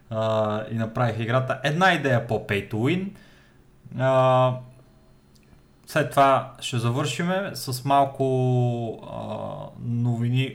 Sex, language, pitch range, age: male, Bulgarian, 115-145 Hz, 20-39